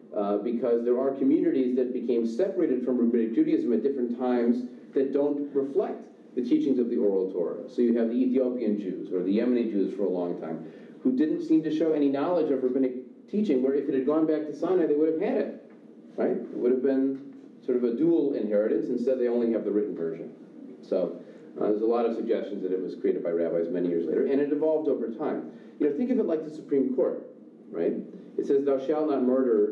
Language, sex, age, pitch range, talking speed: English, male, 40-59, 115-155 Hz, 230 wpm